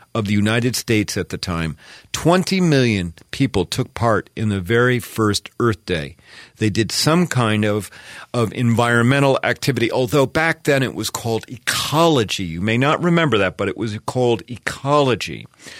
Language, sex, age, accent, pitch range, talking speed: English, male, 40-59, American, 110-150 Hz, 165 wpm